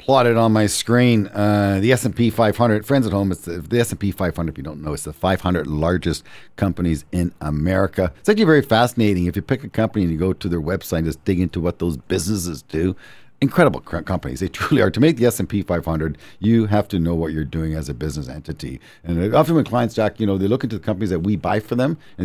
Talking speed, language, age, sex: 245 wpm, English, 50-69, male